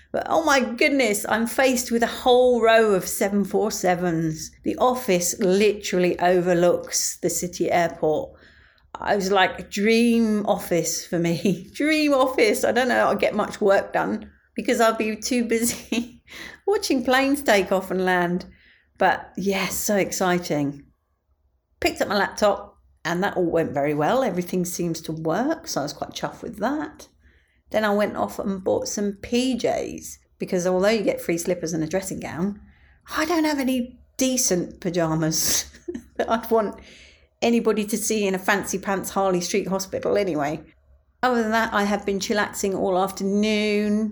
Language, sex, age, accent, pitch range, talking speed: English, female, 40-59, British, 180-235 Hz, 165 wpm